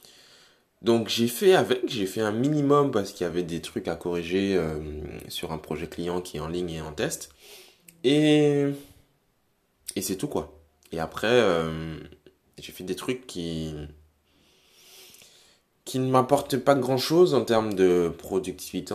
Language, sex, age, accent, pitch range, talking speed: French, male, 20-39, French, 85-125 Hz, 160 wpm